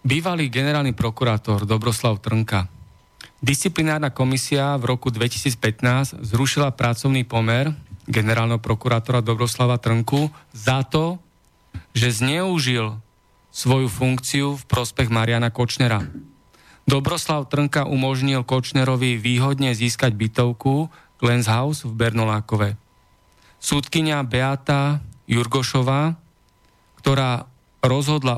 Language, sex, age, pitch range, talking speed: Slovak, male, 40-59, 115-135 Hz, 90 wpm